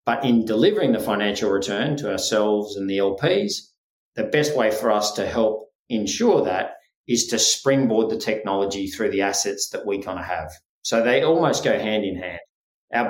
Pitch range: 105-130 Hz